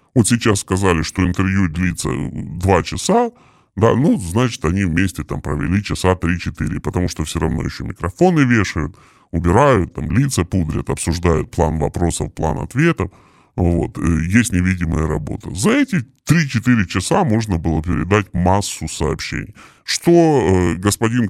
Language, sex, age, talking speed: Russian, female, 20-39, 135 wpm